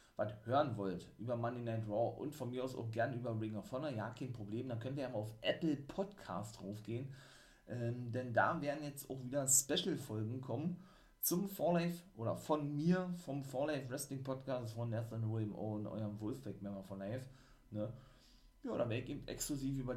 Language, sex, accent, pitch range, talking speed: German, male, German, 110-140 Hz, 205 wpm